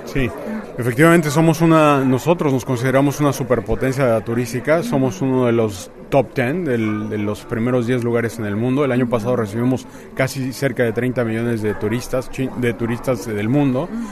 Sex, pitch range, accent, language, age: male, 115-140 Hz, Mexican, Chinese, 30-49